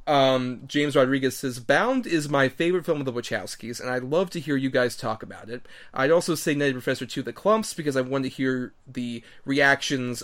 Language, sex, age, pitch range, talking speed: English, male, 30-49, 125-145 Hz, 215 wpm